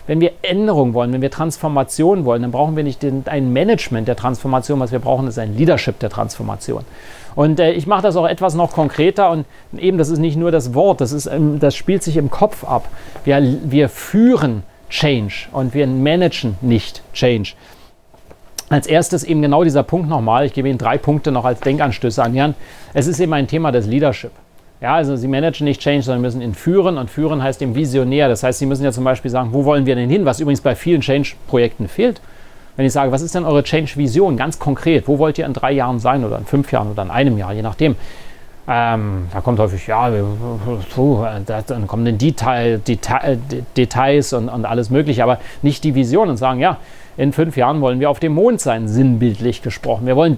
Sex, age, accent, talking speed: male, 40-59, German, 205 wpm